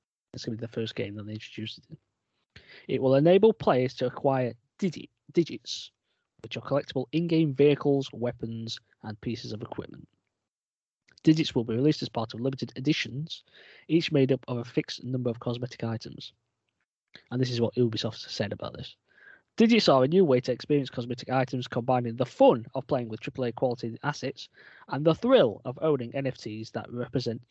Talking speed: 175 wpm